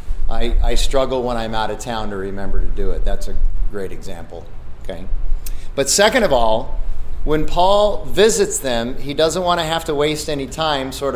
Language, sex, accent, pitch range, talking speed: English, male, American, 115-145 Hz, 195 wpm